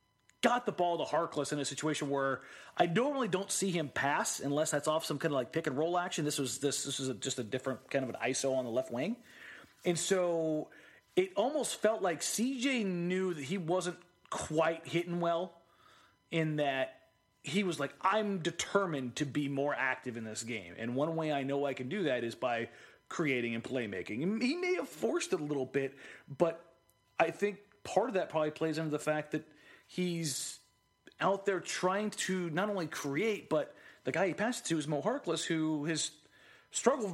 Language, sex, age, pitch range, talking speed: English, male, 30-49, 140-180 Hz, 205 wpm